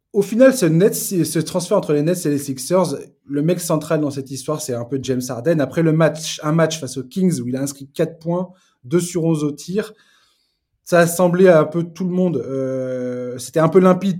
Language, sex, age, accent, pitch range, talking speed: French, male, 20-39, French, 135-175 Hz, 235 wpm